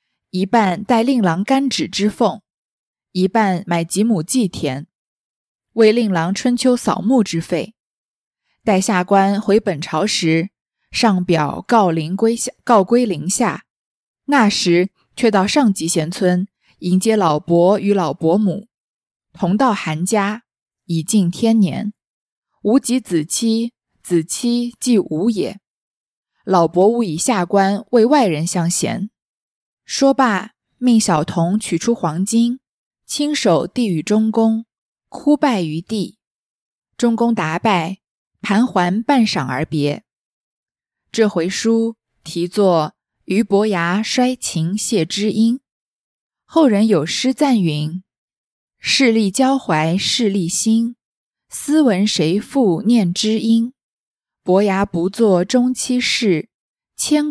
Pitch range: 175-235 Hz